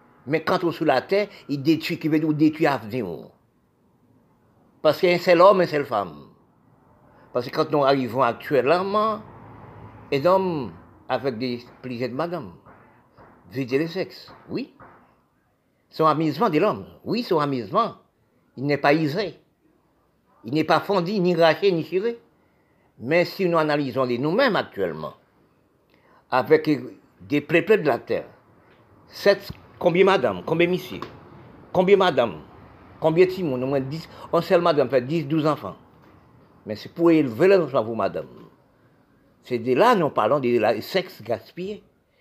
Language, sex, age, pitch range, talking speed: French, male, 50-69, 135-185 Hz, 155 wpm